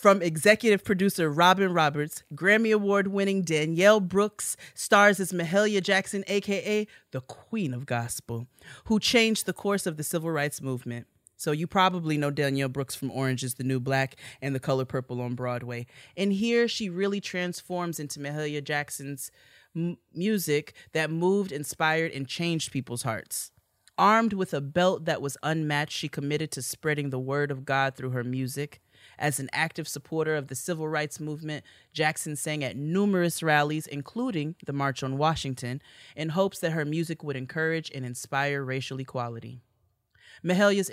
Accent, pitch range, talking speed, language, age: American, 135-180 Hz, 165 wpm, English, 30-49